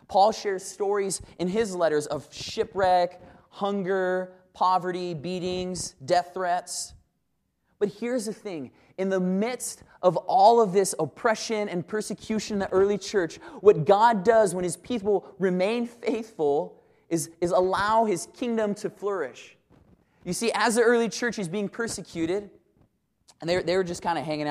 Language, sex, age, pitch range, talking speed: English, male, 20-39, 165-220 Hz, 155 wpm